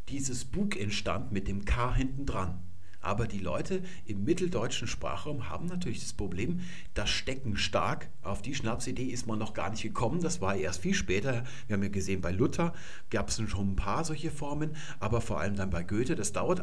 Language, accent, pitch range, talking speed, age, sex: German, German, 95-130 Hz, 200 wpm, 50-69, male